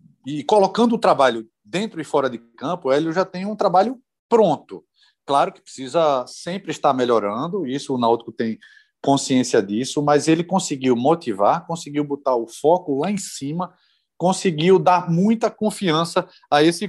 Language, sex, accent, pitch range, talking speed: Portuguese, male, Brazilian, 135-180 Hz, 155 wpm